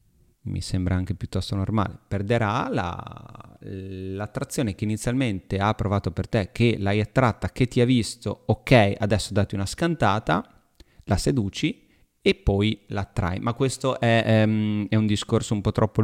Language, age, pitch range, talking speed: Italian, 30-49, 100-120 Hz, 150 wpm